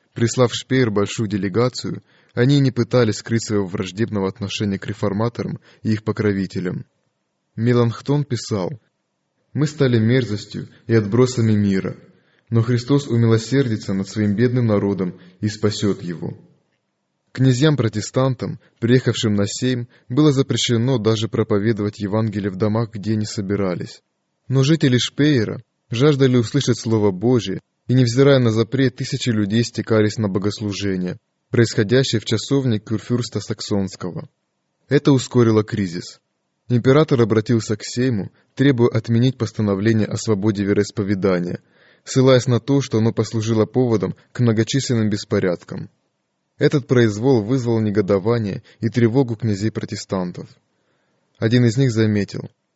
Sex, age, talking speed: male, 20-39, 120 wpm